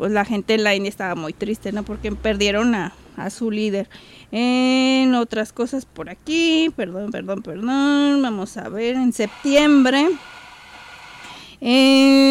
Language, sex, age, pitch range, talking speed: Spanish, female, 30-49, 215-275 Hz, 145 wpm